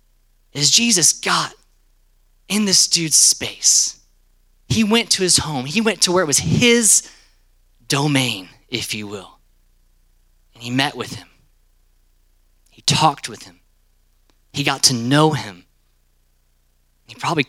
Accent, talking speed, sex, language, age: American, 135 wpm, male, English, 30-49